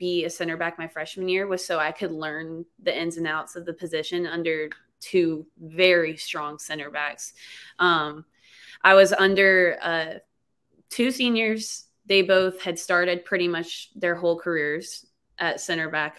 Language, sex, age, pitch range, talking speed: English, female, 20-39, 165-195 Hz, 165 wpm